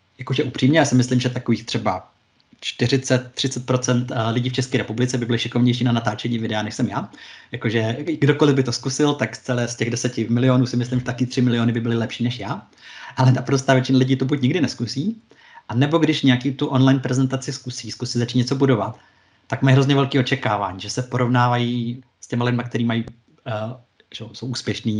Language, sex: Czech, male